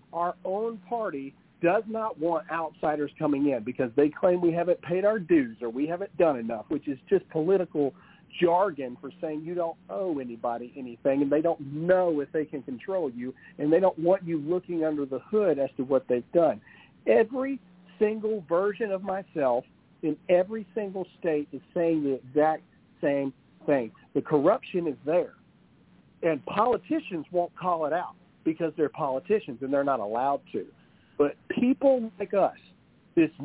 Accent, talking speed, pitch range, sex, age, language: American, 170 wpm, 150-200 Hz, male, 50-69, English